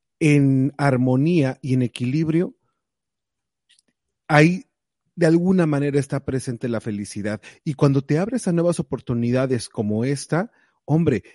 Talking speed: 120 wpm